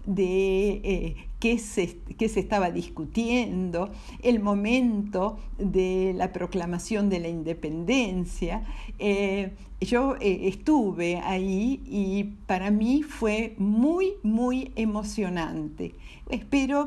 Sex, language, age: female, Spanish, 50-69